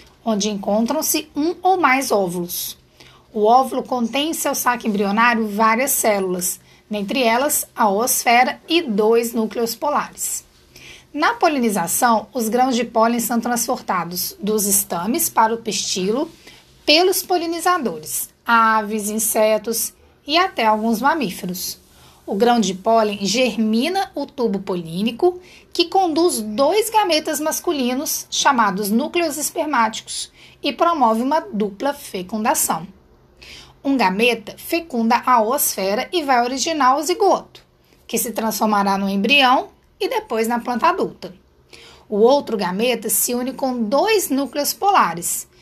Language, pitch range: Portuguese, 220-295 Hz